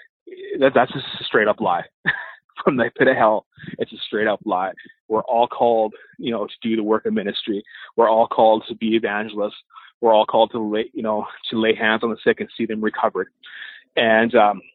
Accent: American